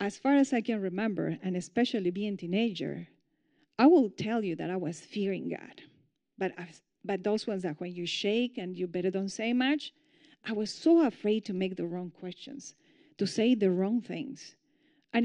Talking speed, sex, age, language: 195 wpm, female, 40-59, English